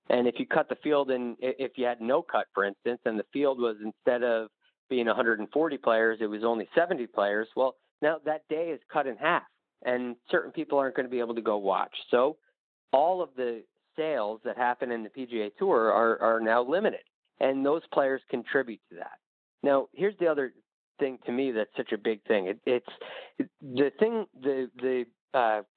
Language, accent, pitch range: English, American, 115-150 Hz